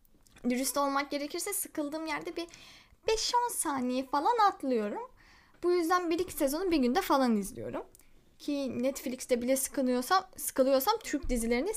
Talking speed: 125 wpm